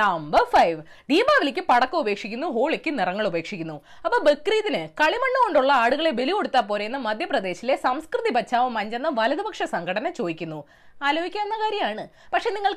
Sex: female